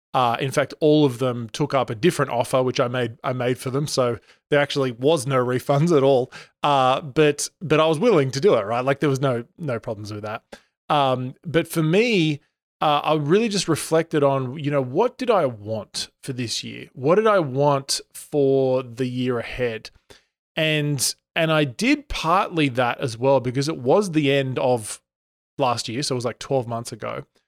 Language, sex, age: English, male, 20-39